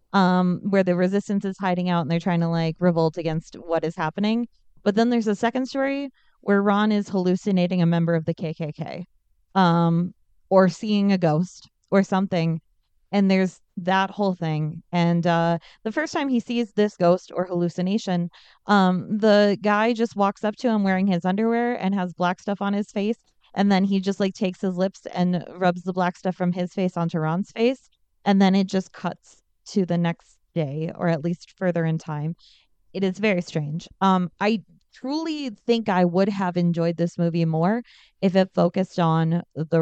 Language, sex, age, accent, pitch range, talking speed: English, female, 20-39, American, 170-205 Hz, 190 wpm